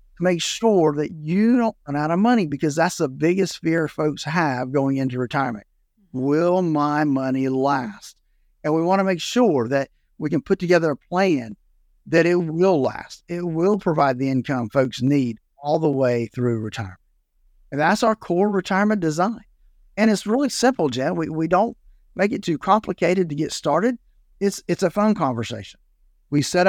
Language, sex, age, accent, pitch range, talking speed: English, male, 50-69, American, 140-185 Hz, 180 wpm